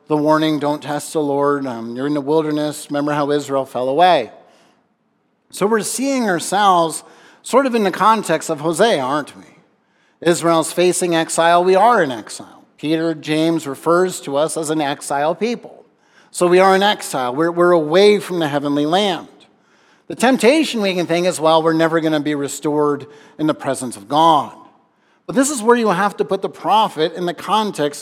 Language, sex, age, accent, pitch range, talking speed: English, male, 50-69, American, 155-200 Hz, 190 wpm